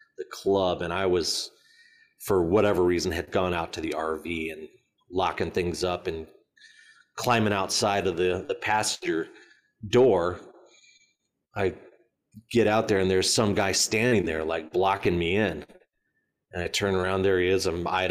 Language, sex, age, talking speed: English, male, 30-49, 160 wpm